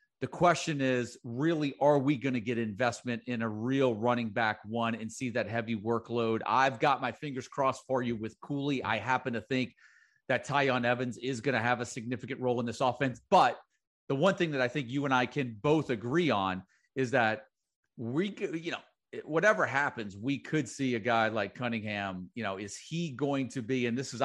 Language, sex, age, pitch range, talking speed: English, male, 40-59, 115-140 Hz, 210 wpm